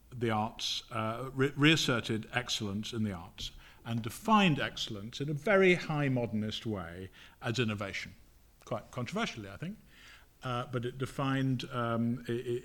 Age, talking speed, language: 50-69, 140 wpm, English